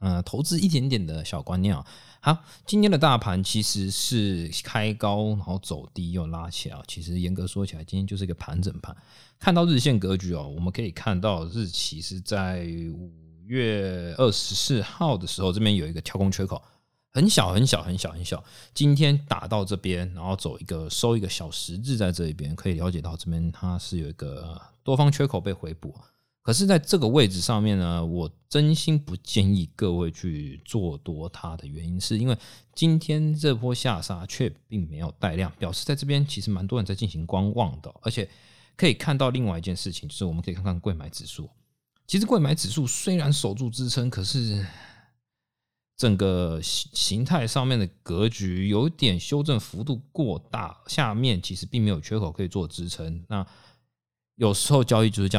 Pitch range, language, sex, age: 90-125 Hz, Chinese, male, 20-39